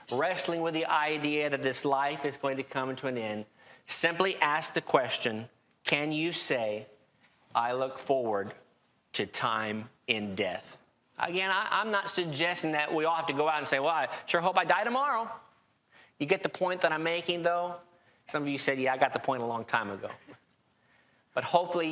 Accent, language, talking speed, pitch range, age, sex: American, English, 195 wpm, 120-160 Hz, 40-59, male